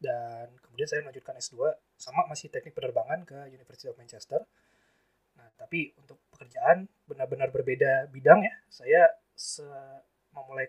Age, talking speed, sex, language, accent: 20-39, 130 wpm, male, Indonesian, native